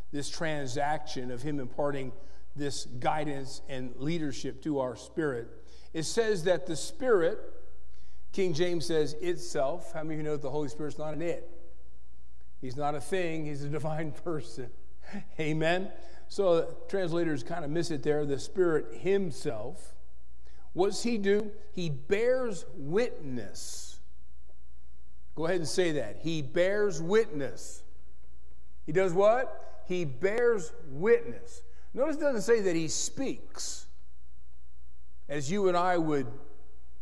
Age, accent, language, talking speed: 50-69, American, English, 135 wpm